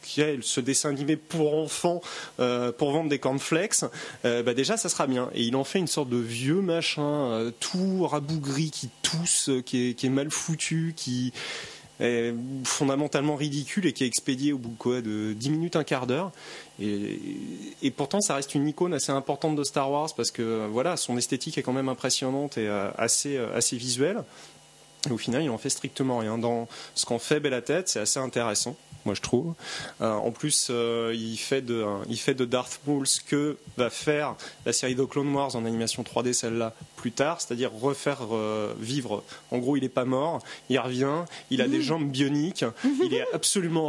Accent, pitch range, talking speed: French, 120-150 Hz, 200 wpm